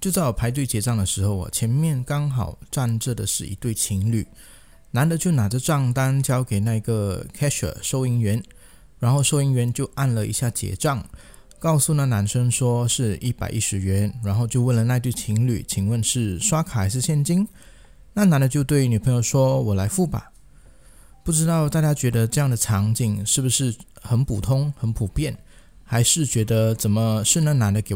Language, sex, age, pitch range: Chinese, male, 20-39, 110-145 Hz